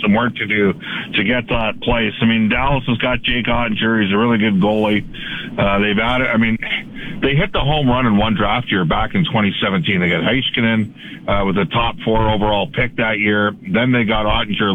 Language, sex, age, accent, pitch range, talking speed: English, male, 50-69, American, 110-130 Hz, 215 wpm